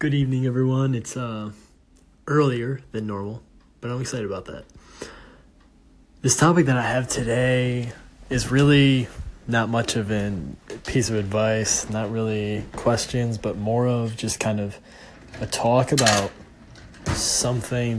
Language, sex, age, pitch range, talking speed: English, male, 20-39, 105-125 Hz, 135 wpm